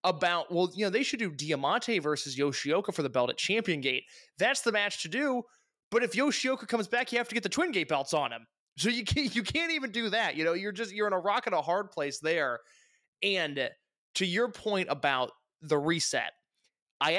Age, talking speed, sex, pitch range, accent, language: 20-39, 225 wpm, male, 150-225 Hz, American, English